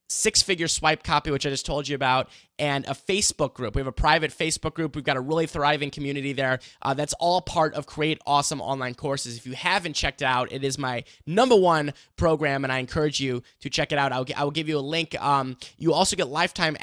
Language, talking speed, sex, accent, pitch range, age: English, 240 wpm, male, American, 140-170 Hz, 20-39